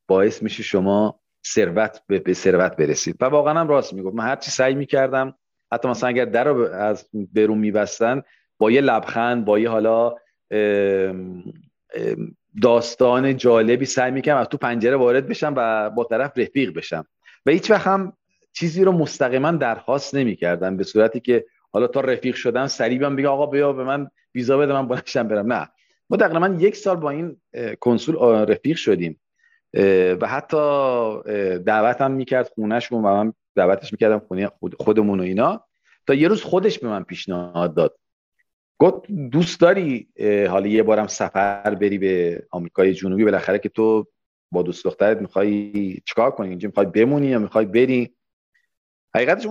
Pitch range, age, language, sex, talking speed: 105-140 Hz, 40-59, Persian, male, 155 wpm